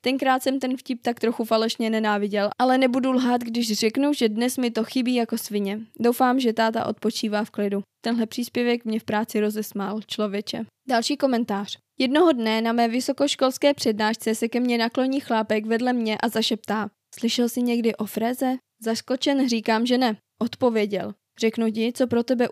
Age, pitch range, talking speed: 20-39, 215-255 Hz, 175 wpm